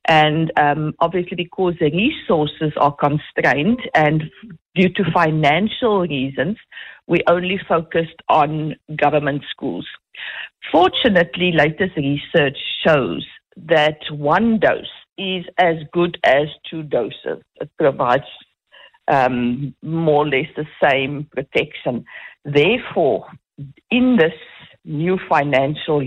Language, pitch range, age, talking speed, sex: English, 150-185 Hz, 50-69, 105 wpm, female